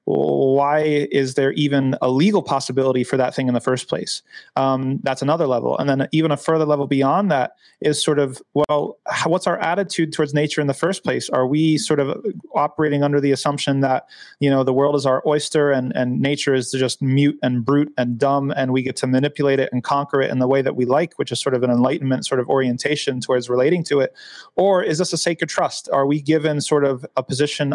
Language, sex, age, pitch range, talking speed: English, male, 30-49, 130-150 Hz, 230 wpm